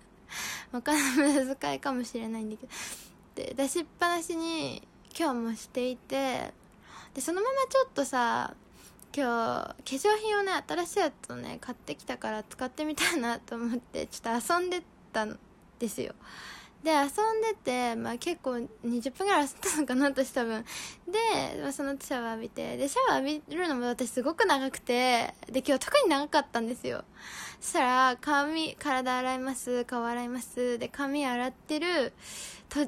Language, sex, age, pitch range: Japanese, female, 10-29, 235-295 Hz